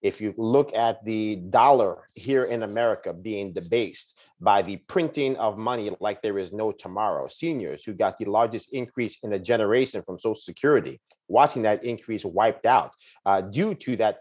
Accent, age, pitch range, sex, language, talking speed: American, 30-49, 105-135 Hz, male, English, 175 wpm